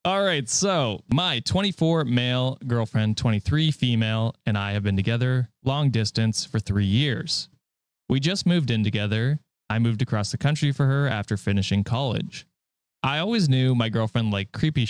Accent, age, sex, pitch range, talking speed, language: American, 20-39, male, 110-145 Hz, 165 wpm, English